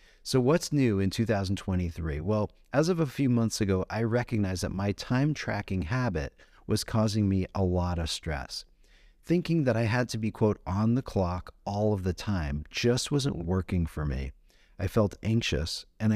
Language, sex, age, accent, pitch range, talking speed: English, male, 40-59, American, 90-115 Hz, 180 wpm